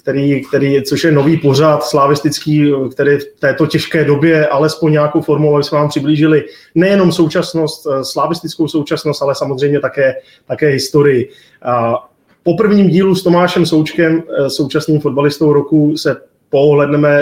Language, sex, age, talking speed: Czech, male, 30-49, 135 wpm